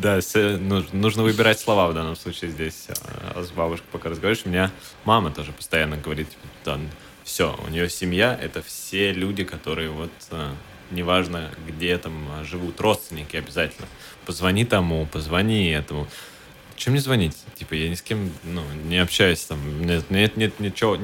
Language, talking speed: Russian, 165 wpm